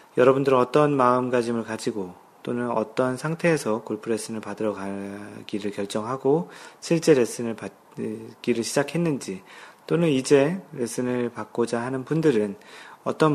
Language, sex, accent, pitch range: Korean, male, native, 110-135 Hz